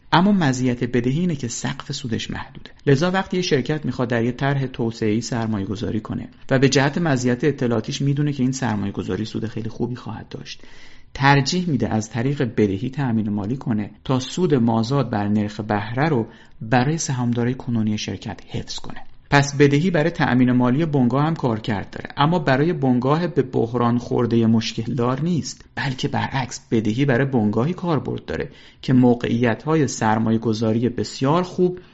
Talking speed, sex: 165 wpm, male